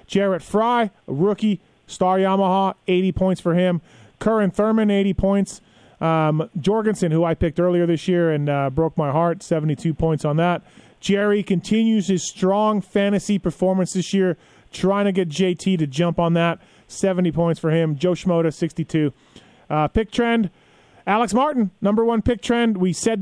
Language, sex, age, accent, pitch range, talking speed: English, male, 30-49, American, 160-195 Hz, 165 wpm